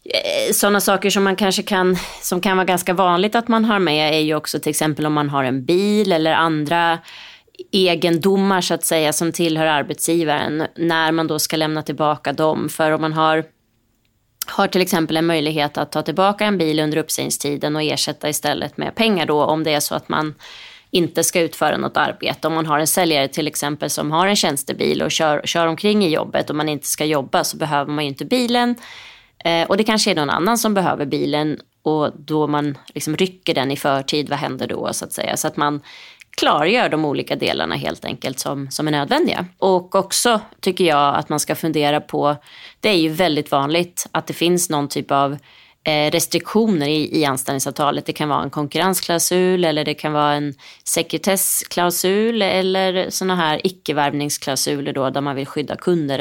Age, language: 20-39, Swedish